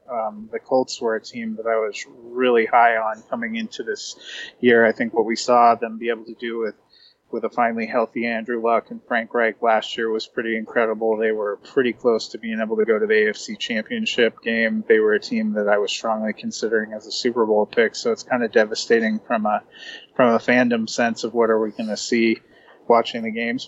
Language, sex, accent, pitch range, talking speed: English, male, American, 110-130 Hz, 230 wpm